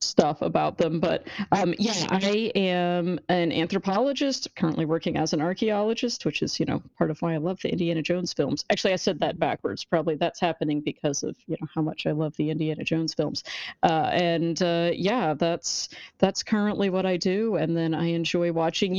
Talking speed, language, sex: 200 wpm, English, female